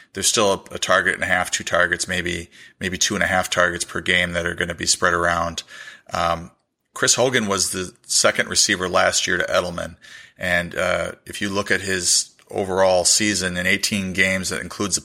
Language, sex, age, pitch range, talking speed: English, male, 30-49, 85-95 Hz, 205 wpm